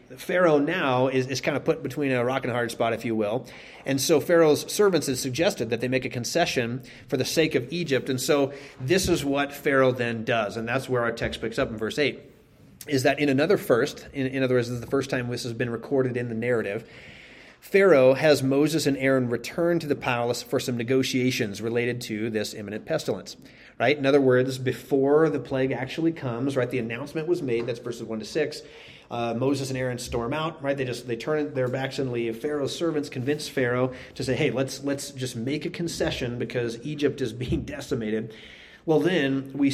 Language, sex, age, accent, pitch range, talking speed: English, male, 30-49, American, 120-145 Hz, 215 wpm